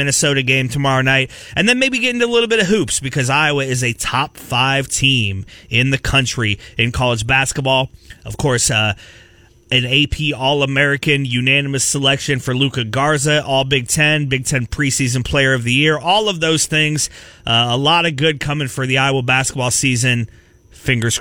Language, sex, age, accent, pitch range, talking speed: English, male, 30-49, American, 130-175 Hz, 180 wpm